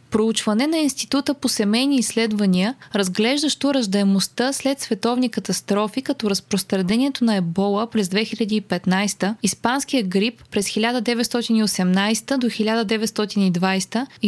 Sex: female